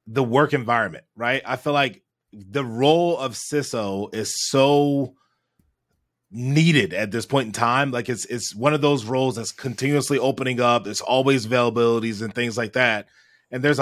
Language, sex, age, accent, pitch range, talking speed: English, male, 20-39, American, 120-140 Hz, 170 wpm